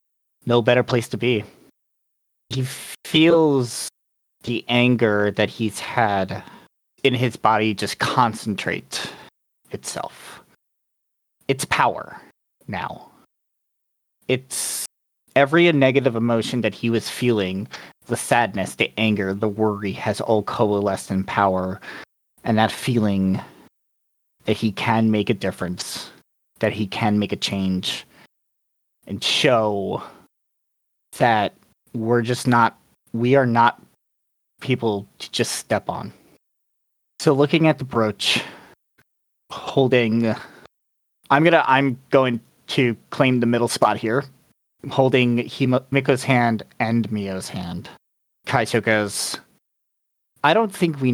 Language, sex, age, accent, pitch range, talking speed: English, male, 30-49, American, 105-130 Hz, 115 wpm